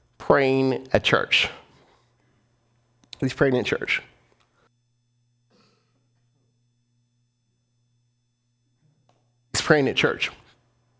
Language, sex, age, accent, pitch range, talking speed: English, male, 50-69, American, 120-190 Hz, 60 wpm